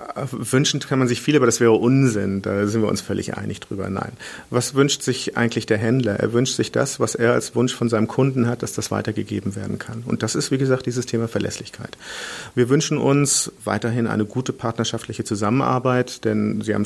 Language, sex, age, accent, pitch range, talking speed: German, male, 40-59, German, 110-125 Hz, 210 wpm